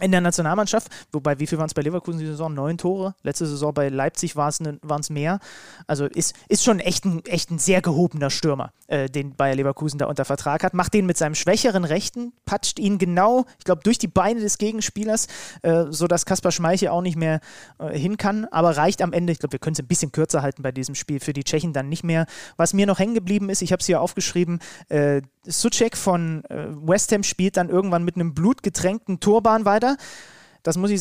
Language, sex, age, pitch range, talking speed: German, male, 30-49, 160-205 Hz, 225 wpm